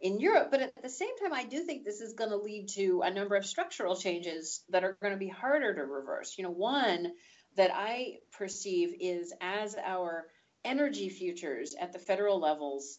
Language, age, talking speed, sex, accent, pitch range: English, 40-59, 205 wpm, female, American, 180-245 Hz